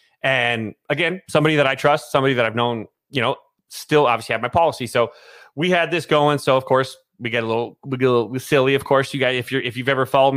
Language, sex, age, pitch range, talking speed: English, male, 30-49, 125-150 Hz, 255 wpm